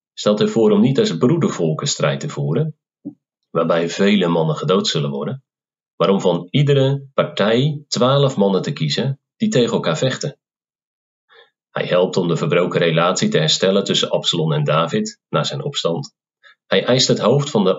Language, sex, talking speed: Dutch, male, 165 wpm